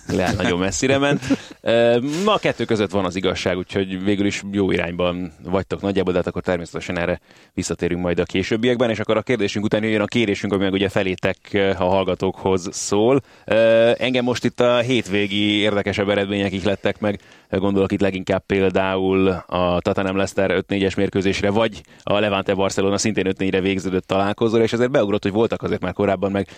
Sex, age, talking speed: male, 30-49, 165 wpm